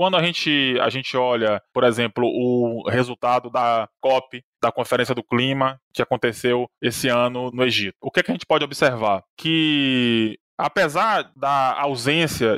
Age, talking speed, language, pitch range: 20-39, 155 wpm, Portuguese, 125-155 Hz